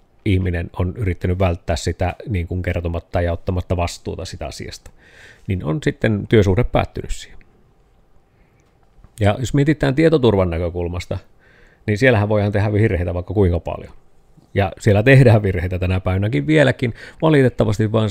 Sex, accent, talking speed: male, native, 135 wpm